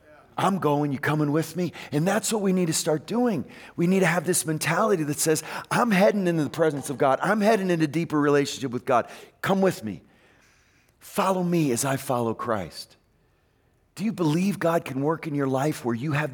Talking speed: 210 wpm